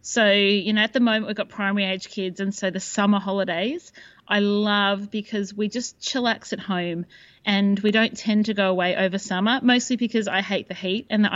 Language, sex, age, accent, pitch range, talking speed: English, female, 30-49, Australian, 185-225 Hz, 215 wpm